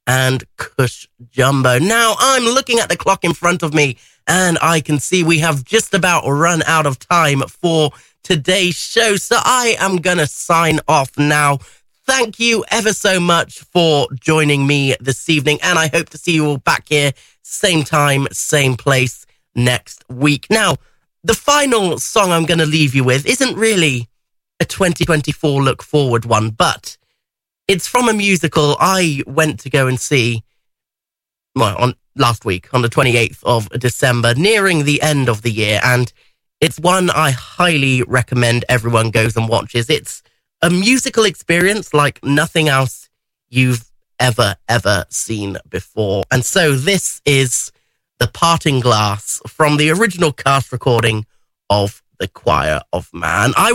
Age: 30-49